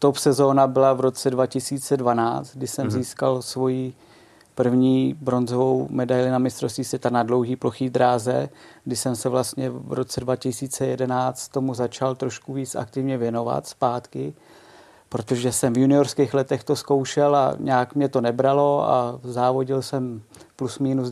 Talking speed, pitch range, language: 145 wpm, 130-140 Hz, Czech